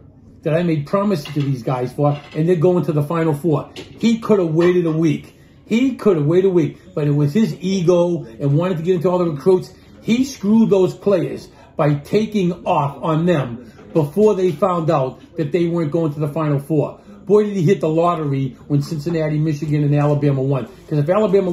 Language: English